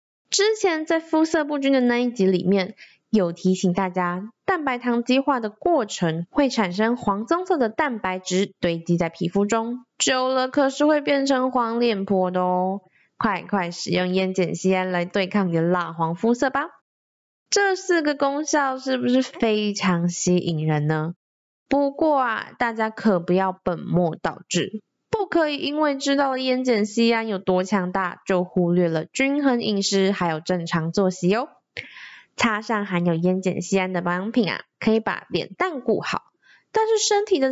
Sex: female